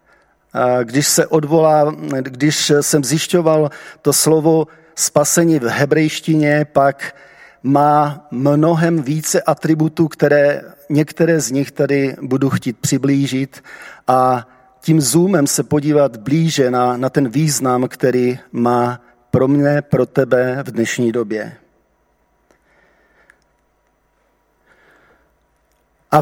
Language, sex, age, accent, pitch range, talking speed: Czech, male, 40-59, native, 125-150 Hz, 95 wpm